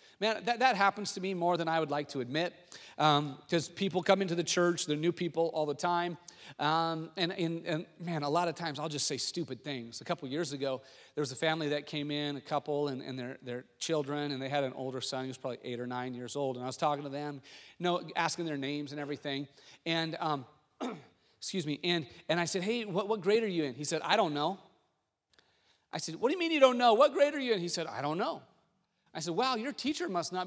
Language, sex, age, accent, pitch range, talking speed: English, male, 40-59, American, 145-225 Hz, 260 wpm